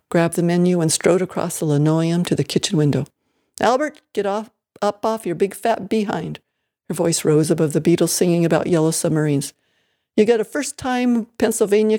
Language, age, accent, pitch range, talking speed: English, 60-79, American, 160-200 Hz, 180 wpm